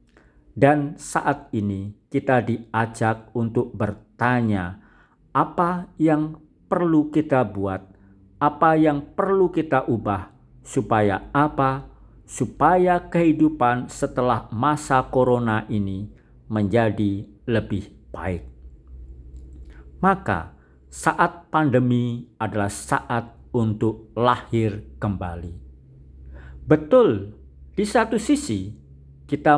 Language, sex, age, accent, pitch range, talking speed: Indonesian, male, 50-69, native, 100-140 Hz, 85 wpm